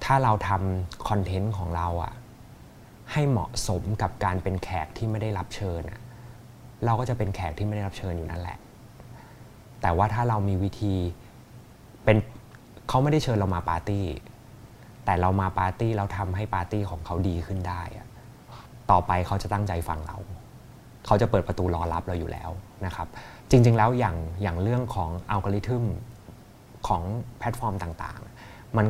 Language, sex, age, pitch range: Thai, male, 20-39, 95-120 Hz